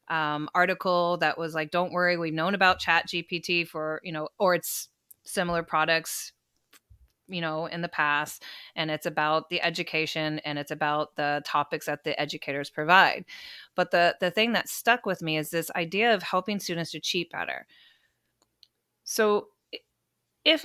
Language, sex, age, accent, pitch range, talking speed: English, female, 30-49, American, 155-190 Hz, 165 wpm